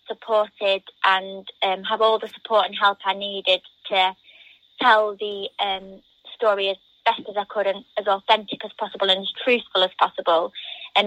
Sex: female